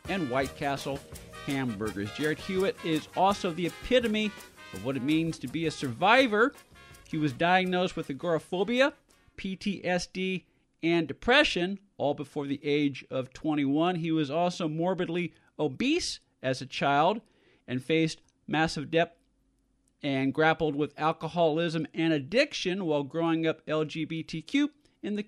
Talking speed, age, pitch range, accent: 135 wpm, 50-69, 155-205 Hz, American